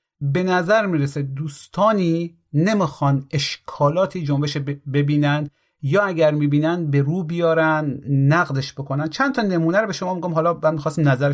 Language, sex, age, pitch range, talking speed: Persian, male, 30-49, 140-175 Hz, 145 wpm